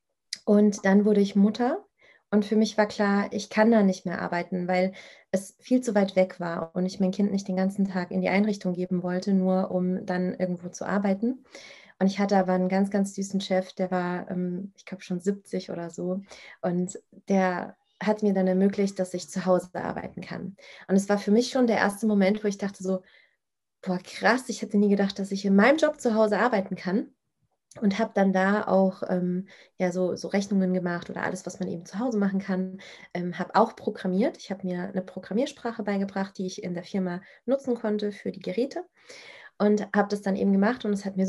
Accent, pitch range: German, 185-210 Hz